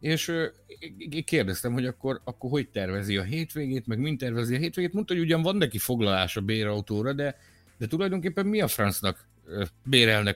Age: 50-69